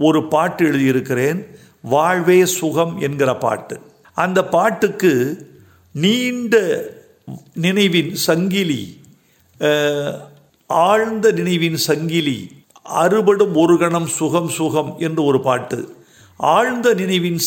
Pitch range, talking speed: 145-185 Hz, 85 wpm